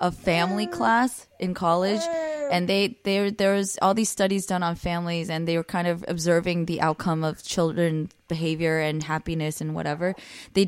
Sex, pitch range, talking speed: female, 160-190 Hz, 180 wpm